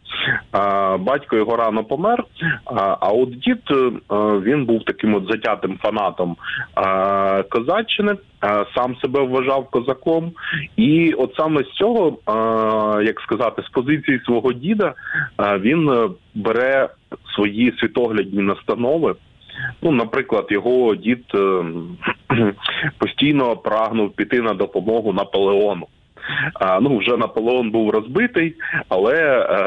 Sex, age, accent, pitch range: male, 20-39, native, 105-135 Hz